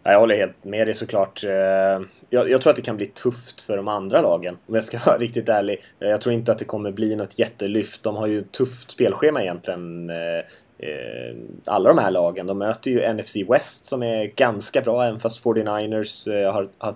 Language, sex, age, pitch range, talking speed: Swedish, male, 20-39, 95-115 Hz, 200 wpm